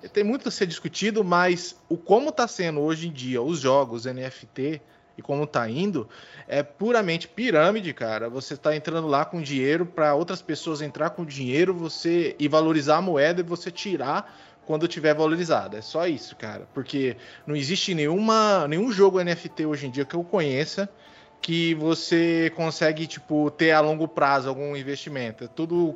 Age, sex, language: 20-39, male, Portuguese